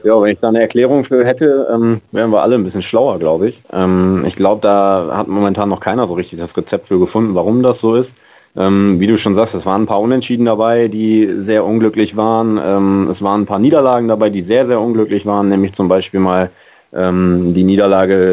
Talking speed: 225 wpm